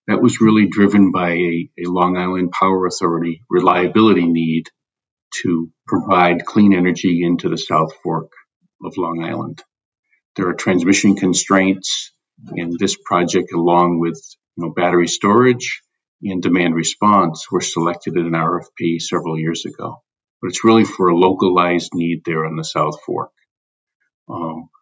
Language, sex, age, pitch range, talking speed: English, male, 50-69, 85-100 Hz, 145 wpm